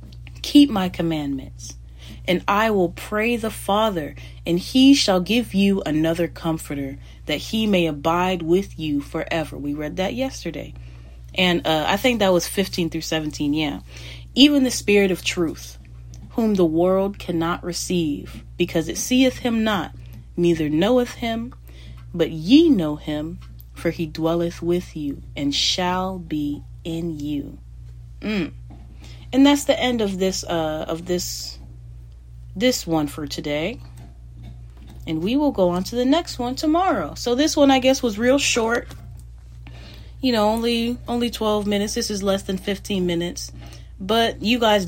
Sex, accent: female, American